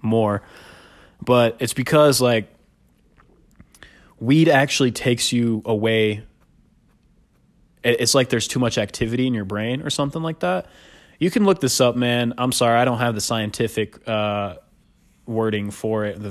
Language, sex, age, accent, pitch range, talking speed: English, male, 20-39, American, 105-125 Hz, 150 wpm